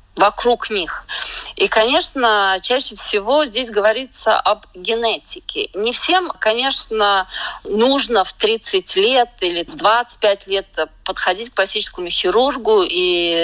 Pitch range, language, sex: 215-315 Hz, Russian, female